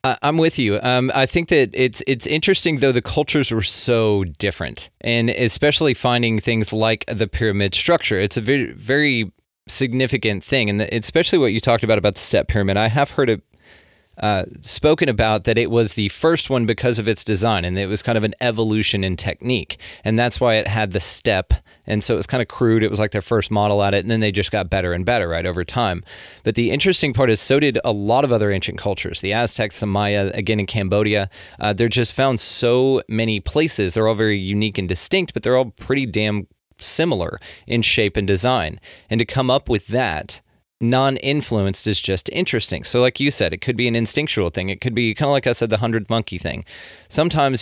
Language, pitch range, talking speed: English, 100-125 Hz, 220 wpm